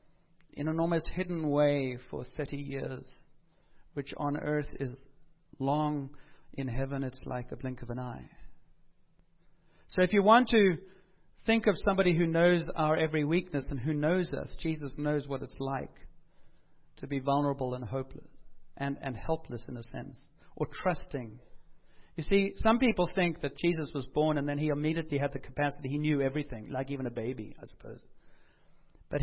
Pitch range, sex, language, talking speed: 135-160 Hz, male, English, 170 wpm